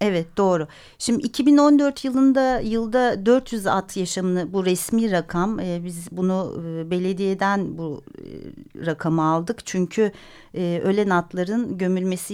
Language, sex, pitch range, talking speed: Turkish, female, 175-235 Hz, 125 wpm